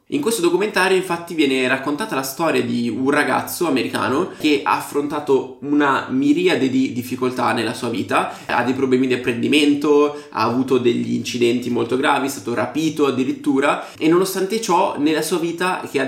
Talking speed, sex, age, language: 170 wpm, male, 20-39, Italian